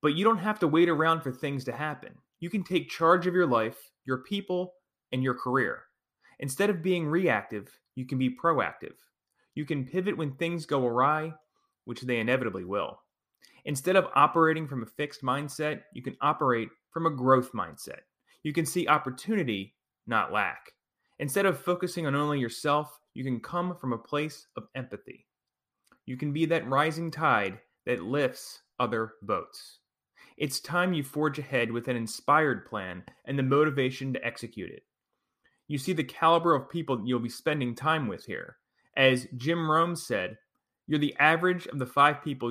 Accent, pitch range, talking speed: American, 130-165 Hz, 175 wpm